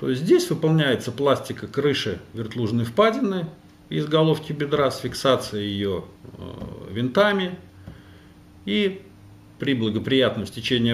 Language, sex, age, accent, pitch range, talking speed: Russian, male, 50-69, native, 105-150 Hz, 100 wpm